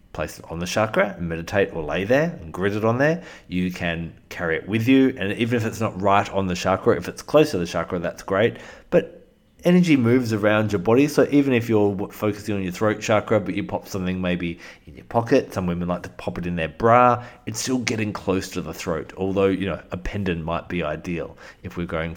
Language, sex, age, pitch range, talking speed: English, male, 30-49, 90-120 Hz, 240 wpm